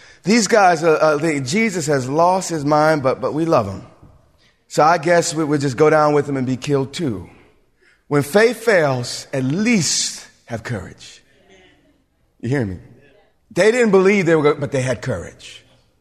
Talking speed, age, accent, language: 185 wpm, 30-49, American, English